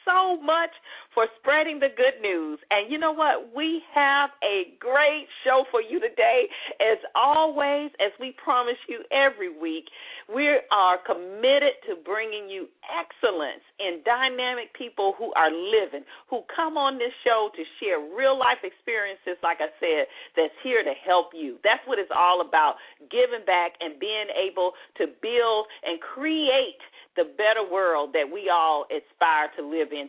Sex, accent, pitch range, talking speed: female, American, 205-315 Hz, 165 wpm